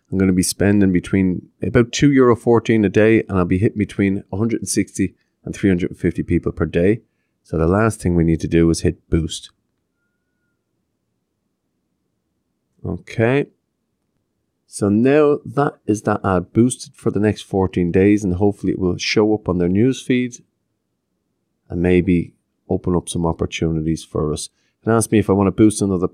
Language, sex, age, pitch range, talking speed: English, male, 30-49, 85-115 Hz, 170 wpm